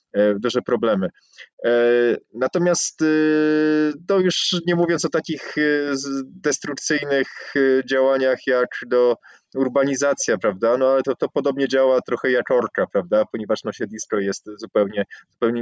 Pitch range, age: 120-145 Hz, 20-39